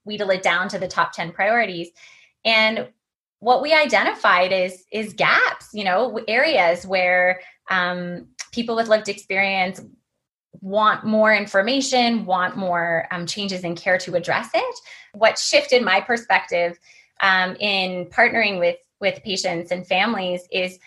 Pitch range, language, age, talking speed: 180-230 Hz, English, 20-39, 140 wpm